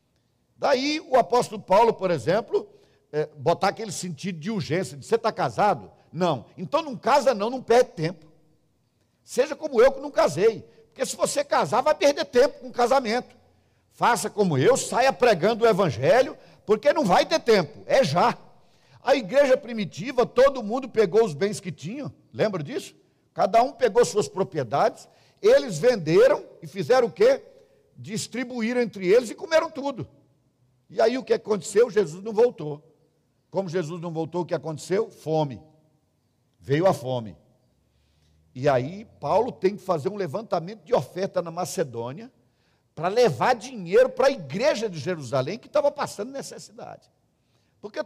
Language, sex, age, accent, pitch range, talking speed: Portuguese, male, 50-69, Brazilian, 170-265 Hz, 160 wpm